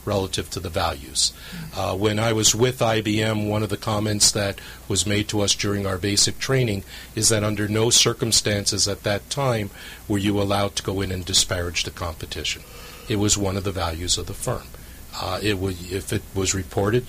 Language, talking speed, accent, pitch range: English, 200 wpm, American, 95-110 Hz